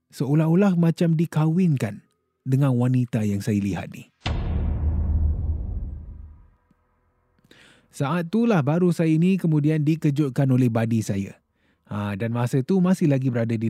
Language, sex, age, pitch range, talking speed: Malay, male, 20-39, 110-160 Hz, 125 wpm